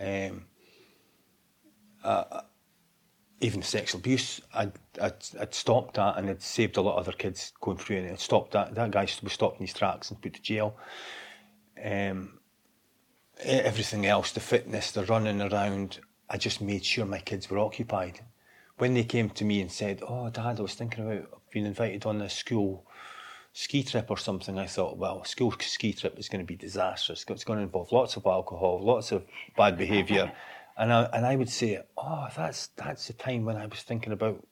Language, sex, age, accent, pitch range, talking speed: English, male, 30-49, British, 100-120 Hz, 200 wpm